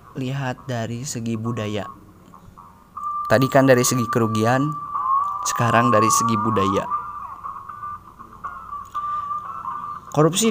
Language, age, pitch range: Indonesian, 20-39, 115-160 Hz